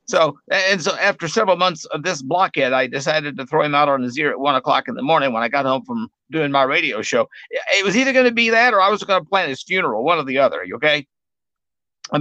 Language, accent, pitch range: English, American, 135-200 Hz